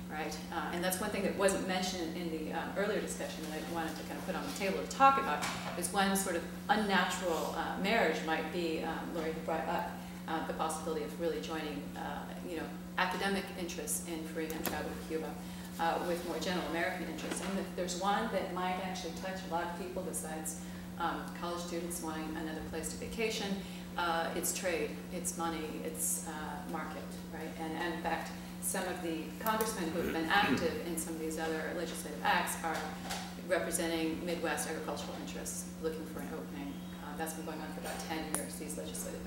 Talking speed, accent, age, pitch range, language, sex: 200 wpm, American, 30-49, 160-180 Hz, English, female